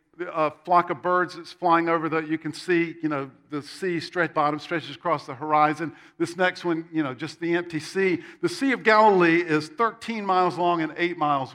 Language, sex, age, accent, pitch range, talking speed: English, male, 50-69, American, 155-185 Hz, 215 wpm